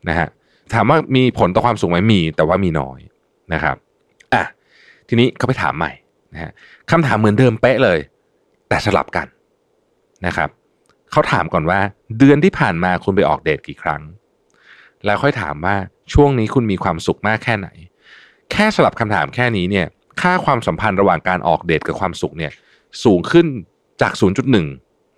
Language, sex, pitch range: Thai, male, 90-125 Hz